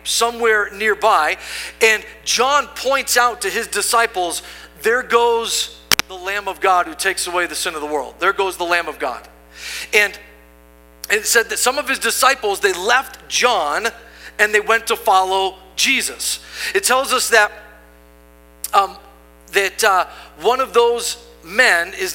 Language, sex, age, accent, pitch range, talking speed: English, male, 50-69, American, 175-255 Hz, 155 wpm